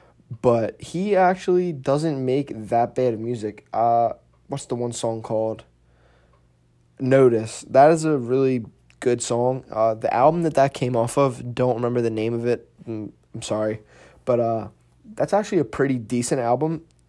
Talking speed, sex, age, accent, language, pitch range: 160 wpm, male, 20-39, American, English, 115-135 Hz